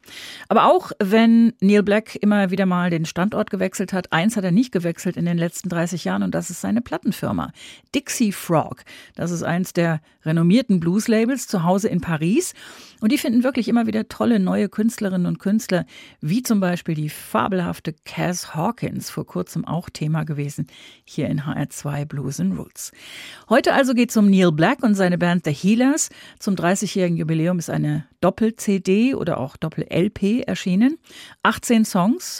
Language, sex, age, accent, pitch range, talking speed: German, female, 40-59, German, 160-210 Hz, 170 wpm